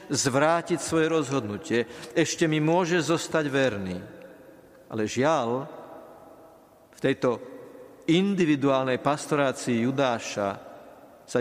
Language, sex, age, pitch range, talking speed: Slovak, male, 50-69, 125-160 Hz, 85 wpm